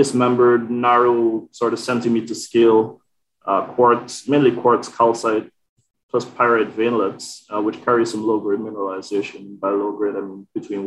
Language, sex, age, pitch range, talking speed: English, male, 20-39, 105-120 Hz, 140 wpm